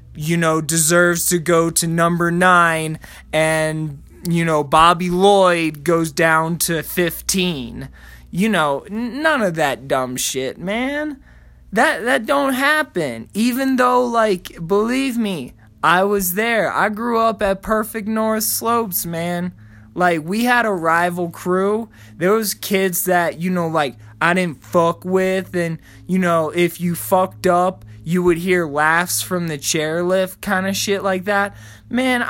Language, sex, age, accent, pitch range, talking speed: English, male, 20-39, American, 165-225 Hz, 150 wpm